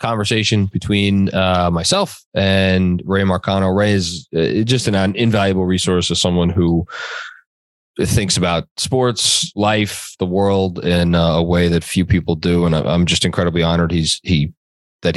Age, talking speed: 20-39, 145 wpm